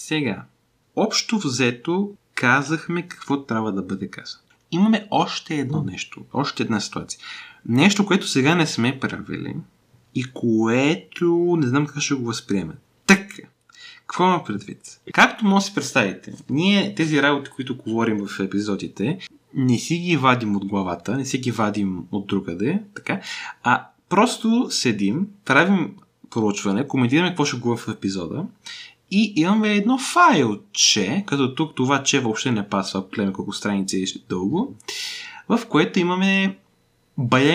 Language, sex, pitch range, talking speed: Bulgarian, male, 110-180 Hz, 145 wpm